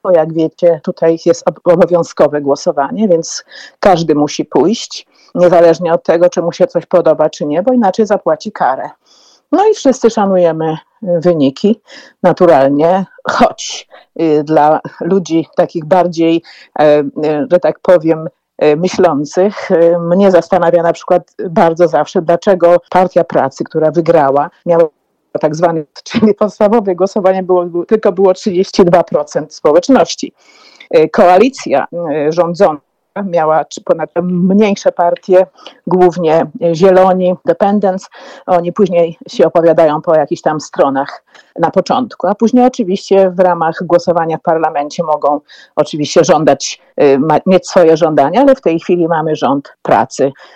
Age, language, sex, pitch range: 50-69, Polish, female, 160-195 Hz